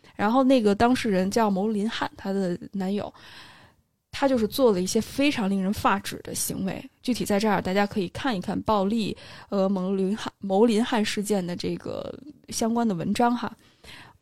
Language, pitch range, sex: Chinese, 195-235 Hz, female